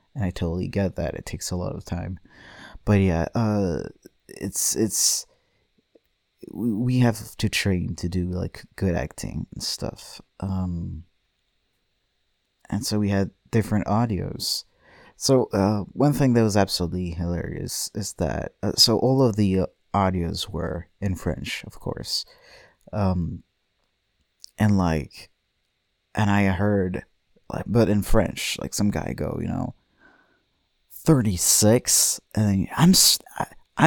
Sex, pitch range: male, 90-105 Hz